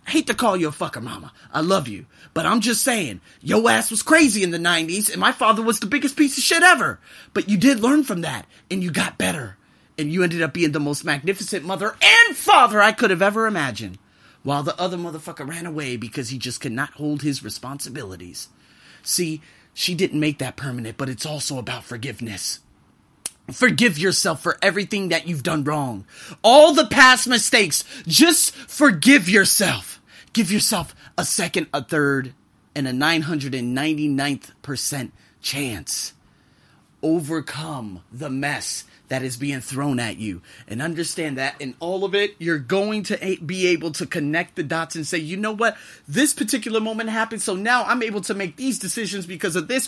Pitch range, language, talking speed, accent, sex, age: 130-210 Hz, English, 185 wpm, American, male, 30-49